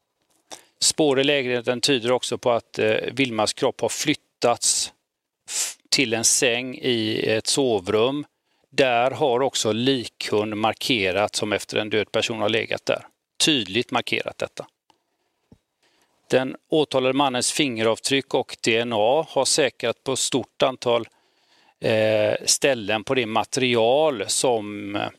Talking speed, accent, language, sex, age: 120 wpm, native, Swedish, male, 40-59